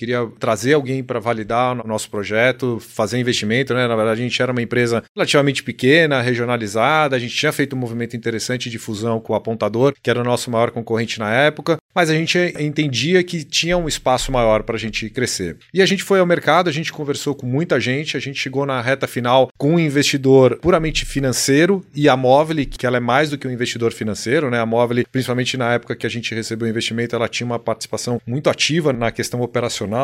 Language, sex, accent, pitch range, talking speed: Portuguese, male, Brazilian, 120-160 Hz, 220 wpm